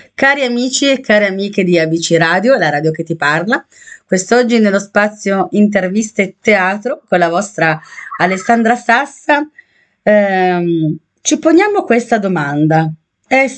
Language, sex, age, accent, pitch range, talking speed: Italian, female, 30-49, native, 165-230 Hz, 130 wpm